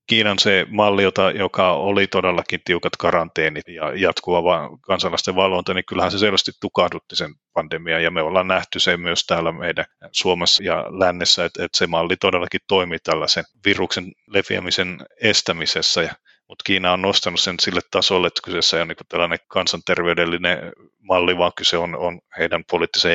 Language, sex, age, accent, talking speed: Finnish, male, 30-49, native, 160 wpm